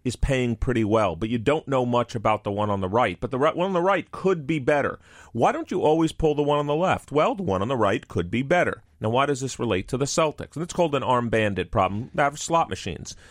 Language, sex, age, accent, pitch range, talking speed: English, male, 40-59, American, 110-145 Hz, 280 wpm